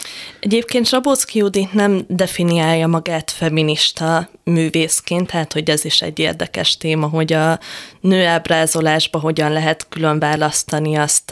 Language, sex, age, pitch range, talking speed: Hungarian, female, 20-39, 155-170 Hz, 115 wpm